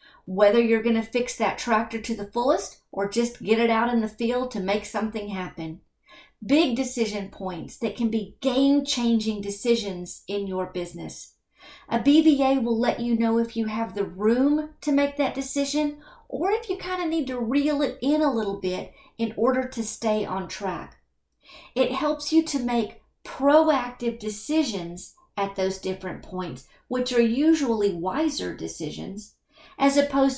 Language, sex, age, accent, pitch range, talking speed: English, female, 50-69, American, 200-270 Hz, 170 wpm